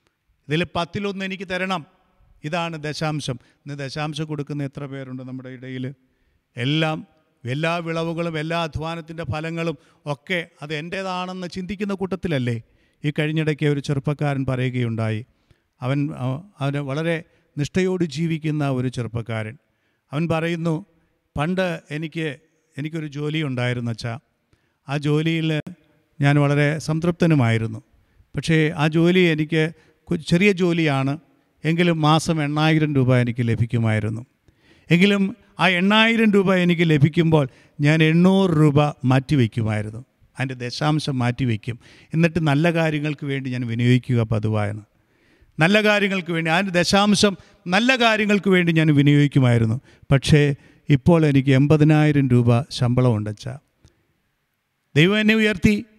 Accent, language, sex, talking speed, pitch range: native, Malayalam, male, 105 wpm, 130-170 Hz